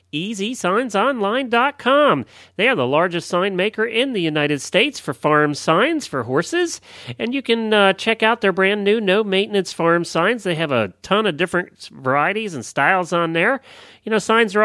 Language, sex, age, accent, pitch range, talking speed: English, male, 40-59, American, 135-210 Hz, 180 wpm